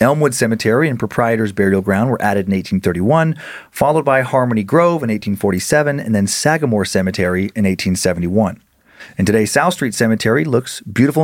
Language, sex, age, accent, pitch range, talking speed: English, male, 30-49, American, 105-135 Hz, 155 wpm